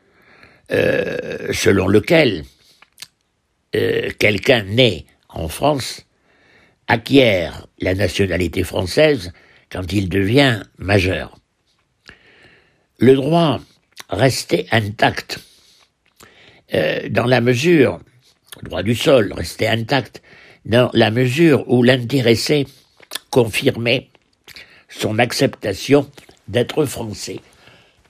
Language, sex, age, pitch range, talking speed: French, male, 60-79, 95-135 Hz, 85 wpm